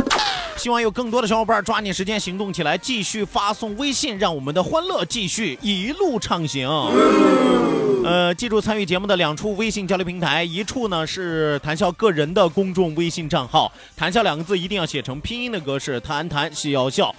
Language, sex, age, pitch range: Chinese, male, 30-49, 150-210 Hz